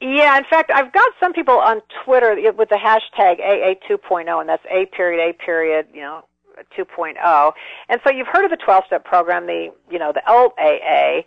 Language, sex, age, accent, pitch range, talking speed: English, female, 50-69, American, 180-240 Hz, 185 wpm